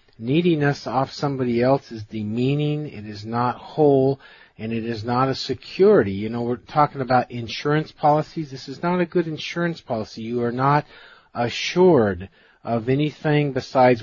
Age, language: 40-59, English